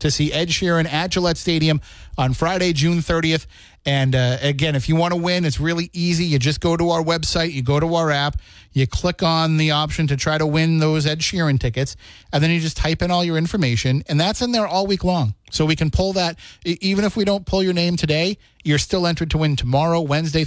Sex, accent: male, American